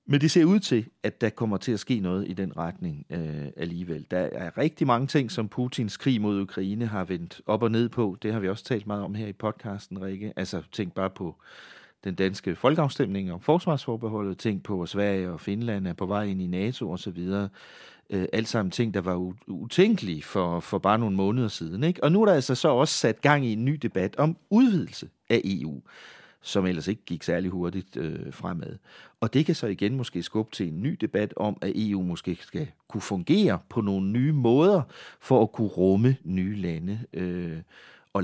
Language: English